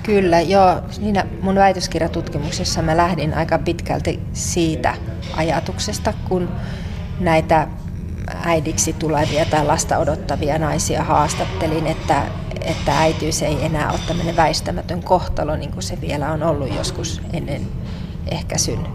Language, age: Finnish, 30-49